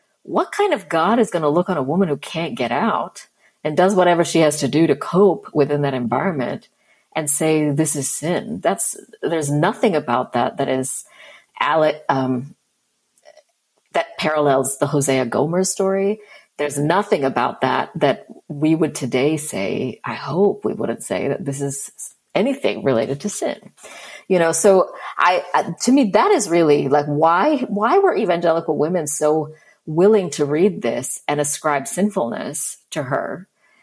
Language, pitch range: English, 145-185 Hz